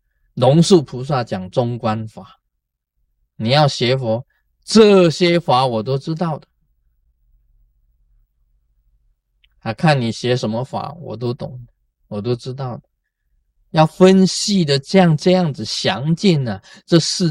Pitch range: 110-170 Hz